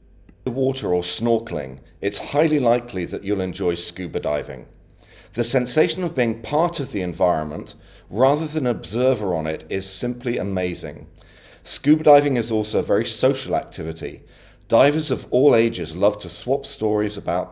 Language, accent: English, British